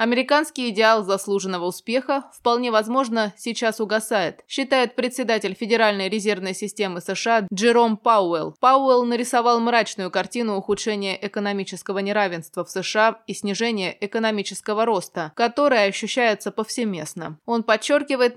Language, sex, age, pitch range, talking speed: Russian, female, 20-39, 190-235 Hz, 110 wpm